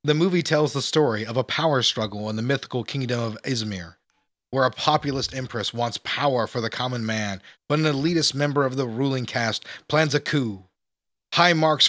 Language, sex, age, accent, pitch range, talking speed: English, male, 30-49, American, 115-150 Hz, 190 wpm